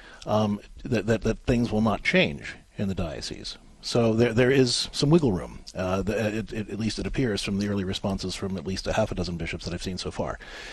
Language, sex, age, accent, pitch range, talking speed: English, male, 40-59, American, 95-135 Hz, 230 wpm